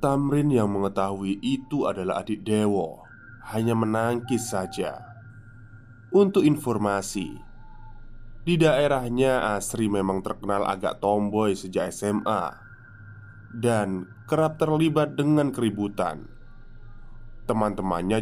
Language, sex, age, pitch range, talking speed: Indonesian, male, 20-39, 105-130 Hz, 90 wpm